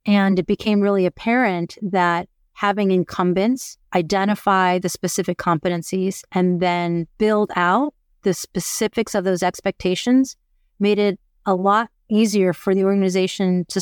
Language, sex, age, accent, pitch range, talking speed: English, female, 30-49, American, 180-215 Hz, 130 wpm